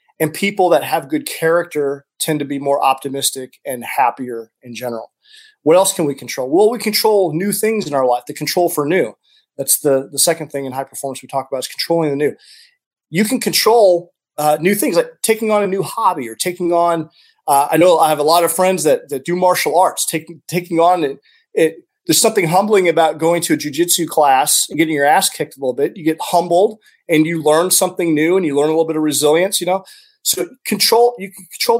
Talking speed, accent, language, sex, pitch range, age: 230 wpm, American, English, male, 145-190 Hz, 30-49